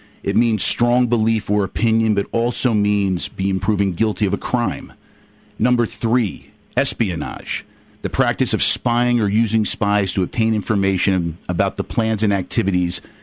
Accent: American